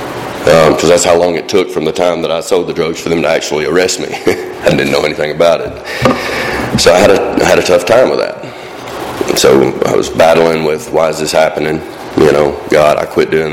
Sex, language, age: male, English, 30-49